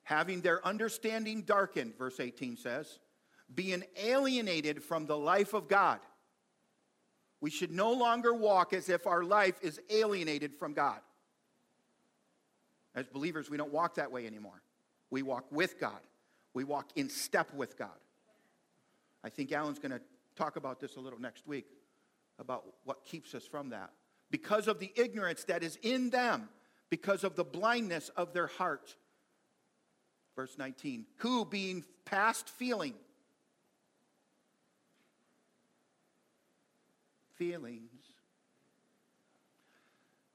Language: English